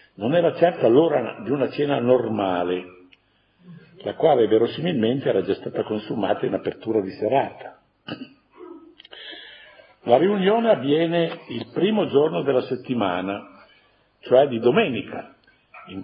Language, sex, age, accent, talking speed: Italian, male, 50-69, native, 115 wpm